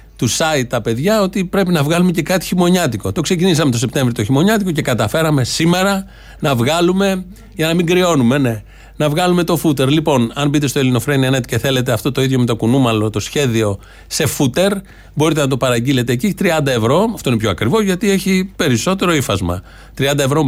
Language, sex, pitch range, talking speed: Greek, male, 115-155 Hz, 190 wpm